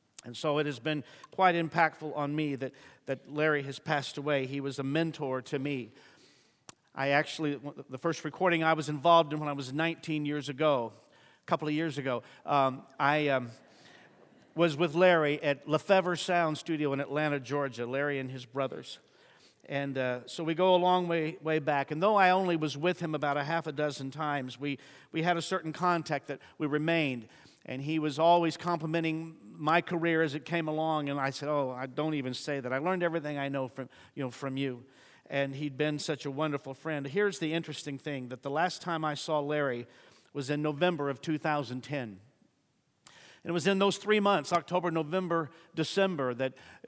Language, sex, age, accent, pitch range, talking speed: English, male, 50-69, American, 140-165 Hz, 190 wpm